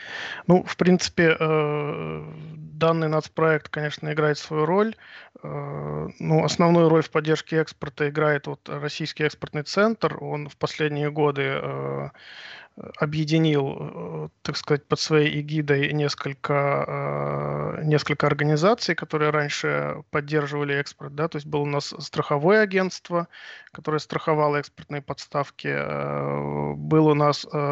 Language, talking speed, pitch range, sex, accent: Russian, 105 wpm, 145-160 Hz, male, native